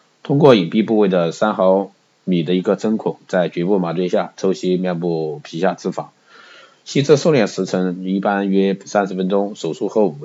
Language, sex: Chinese, male